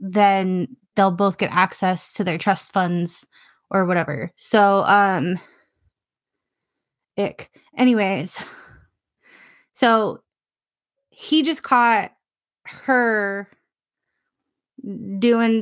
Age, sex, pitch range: 20-39, female, 180-220 Hz